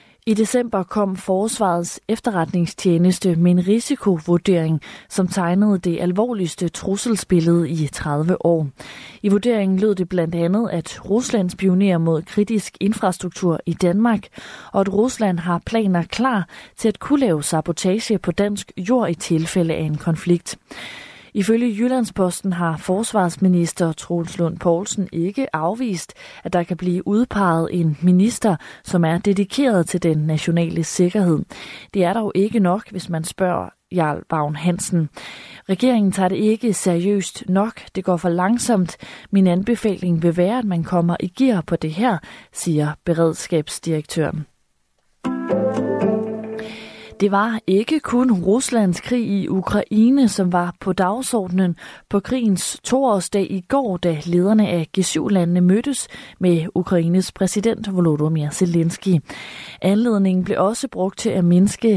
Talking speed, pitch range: 135 wpm, 170-210 Hz